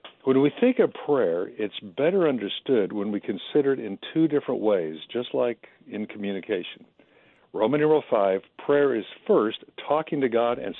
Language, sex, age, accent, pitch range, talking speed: English, male, 60-79, American, 115-145 Hz, 160 wpm